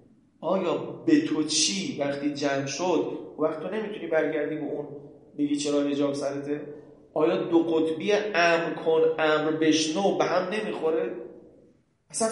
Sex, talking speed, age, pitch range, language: male, 130 wpm, 30-49, 145-200 Hz, Persian